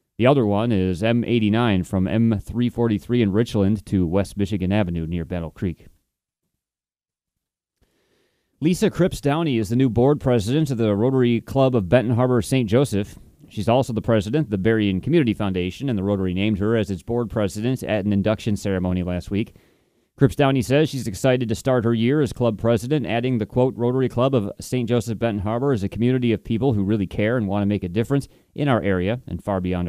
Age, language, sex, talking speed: 30-49, English, male, 200 wpm